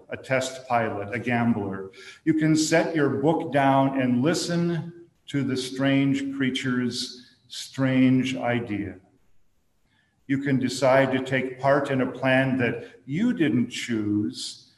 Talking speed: 130 wpm